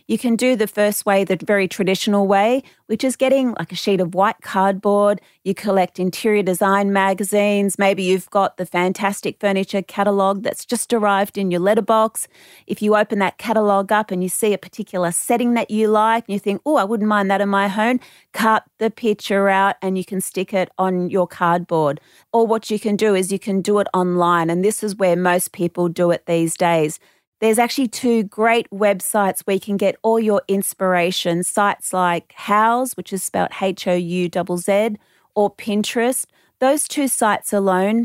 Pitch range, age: 185-220 Hz, 30-49